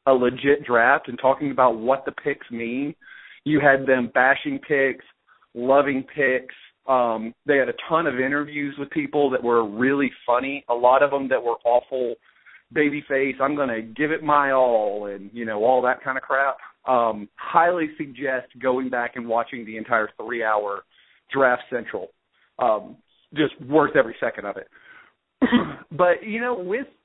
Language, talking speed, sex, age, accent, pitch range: English, 170 wpm, male, 40-59, American, 130-220 Hz